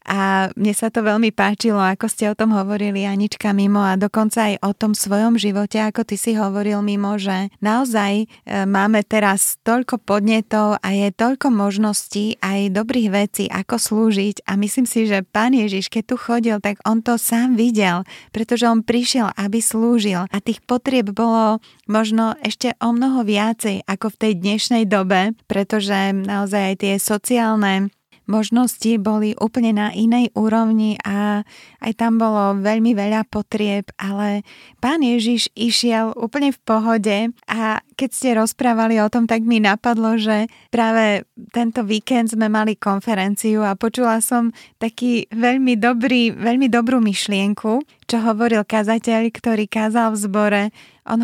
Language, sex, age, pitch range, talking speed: Slovak, female, 20-39, 205-235 Hz, 155 wpm